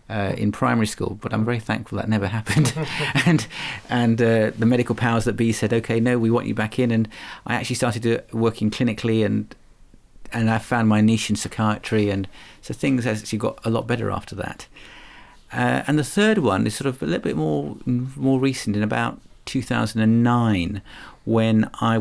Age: 50-69